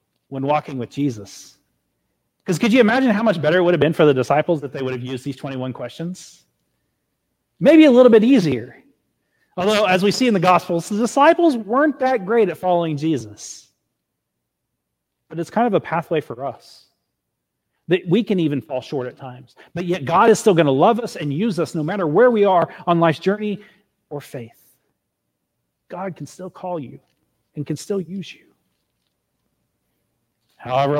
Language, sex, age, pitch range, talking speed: English, male, 40-59, 130-185 Hz, 185 wpm